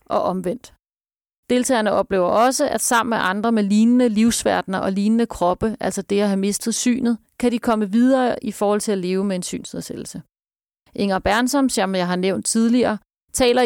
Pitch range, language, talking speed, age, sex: 195-235 Hz, Danish, 180 wpm, 30-49, female